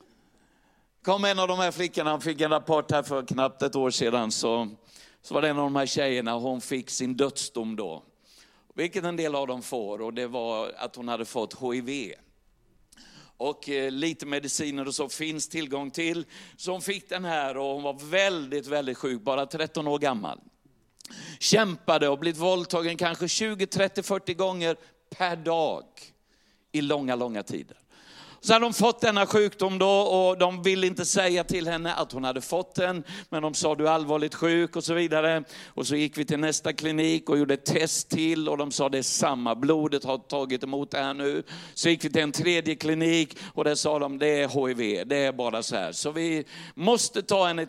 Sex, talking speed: male, 205 wpm